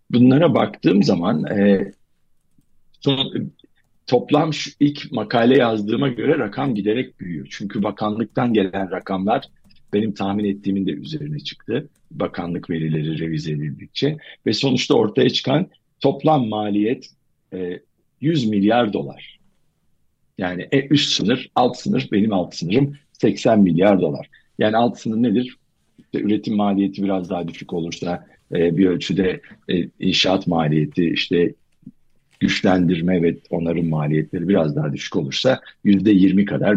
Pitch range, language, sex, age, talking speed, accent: 90-125 Hz, Turkish, male, 50-69, 120 wpm, native